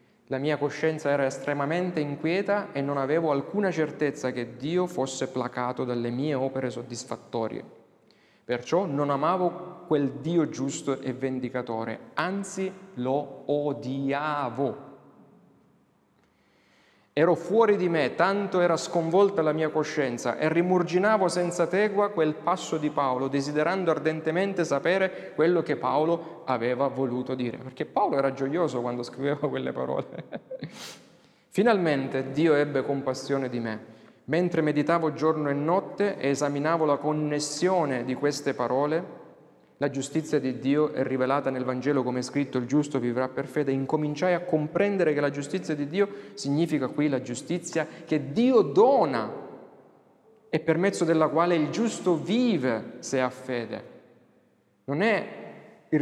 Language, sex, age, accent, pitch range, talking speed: Italian, male, 30-49, native, 135-175 Hz, 135 wpm